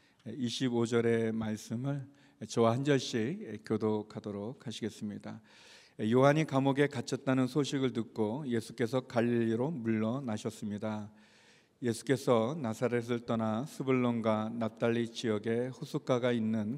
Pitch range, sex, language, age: 110-130 Hz, male, Korean, 40-59